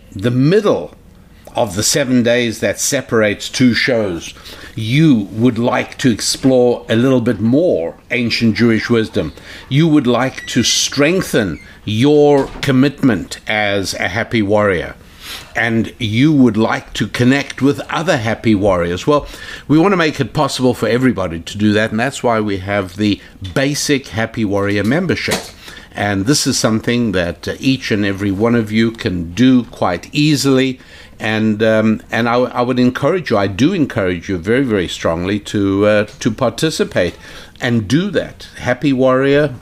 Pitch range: 105-135 Hz